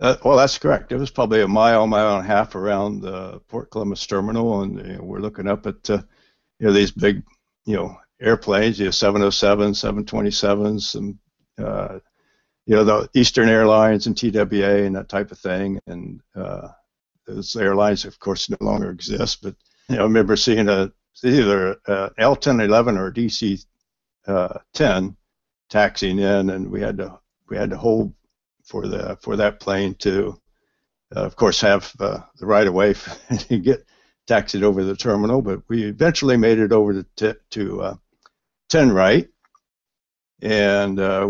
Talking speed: 175 wpm